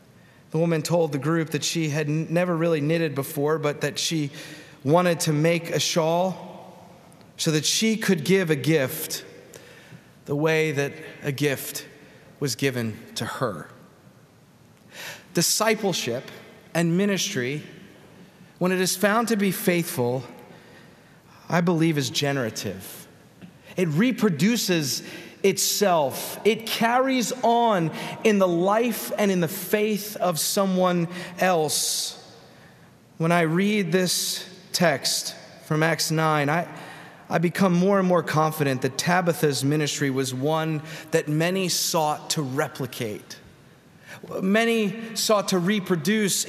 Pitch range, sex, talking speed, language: 155-185 Hz, male, 125 wpm, English